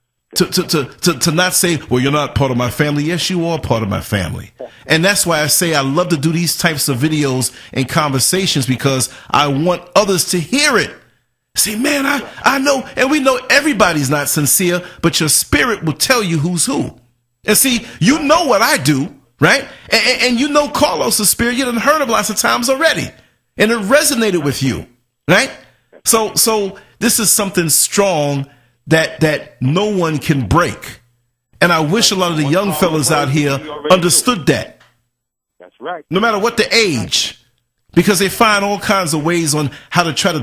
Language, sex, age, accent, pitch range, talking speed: English, male, 40-59, American, 140-195 Hz, 200 wpm